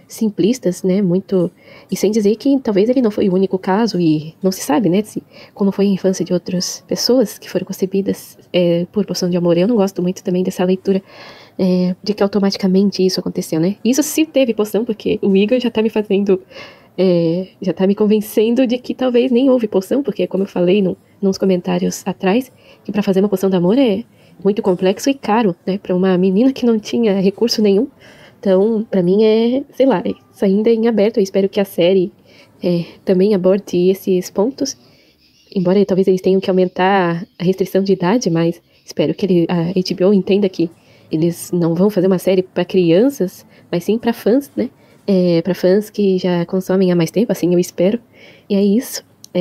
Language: Portuguese